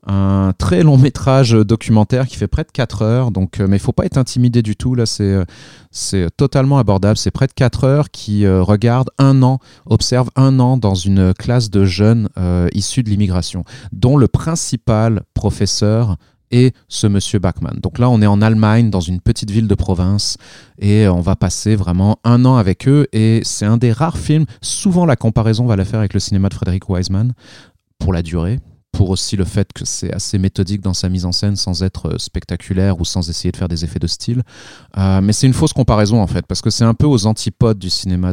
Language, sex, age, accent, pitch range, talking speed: French, male, 30-49, French, 95-125 Hz, 220 wpm